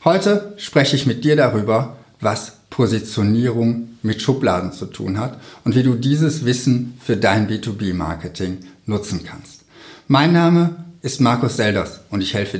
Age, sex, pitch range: 60-79, male, 100-140 Hz